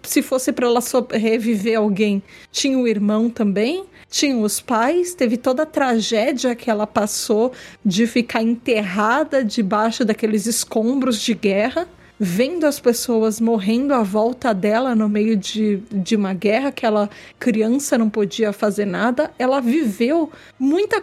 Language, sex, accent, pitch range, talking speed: Portuguese, female, Brazilian, 220-290 Hz, 150 wpm